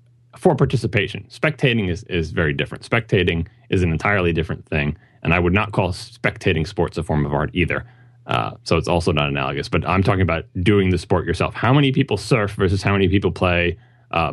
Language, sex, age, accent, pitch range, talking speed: English, male, 30-49, American, 95-125 Hz, 205 wpm